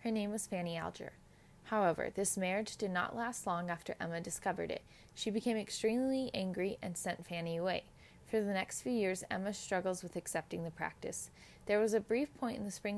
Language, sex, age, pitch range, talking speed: English, female, 20-39, 175-215 Hz, 200 wpm